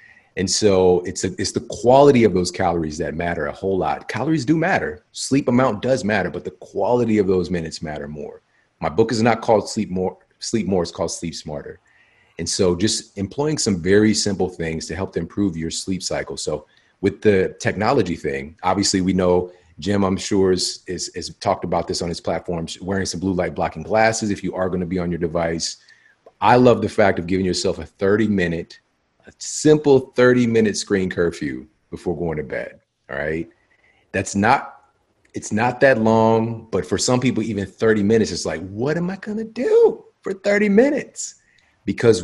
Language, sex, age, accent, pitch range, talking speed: English, male, 30-49, American, 90-115 Hz, 195 wpm